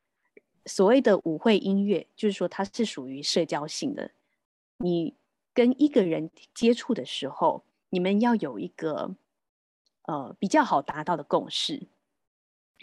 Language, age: Chinese, 20-39